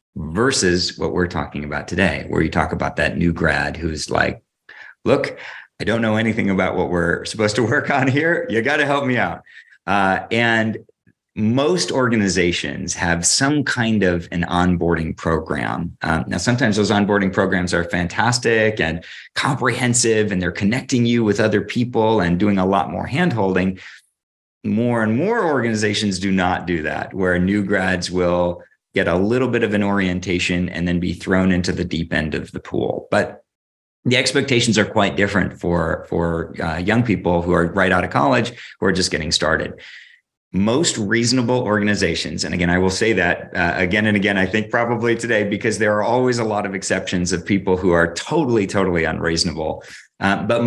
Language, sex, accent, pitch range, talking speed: English, male, American, 85-110 Hz, 180 wpm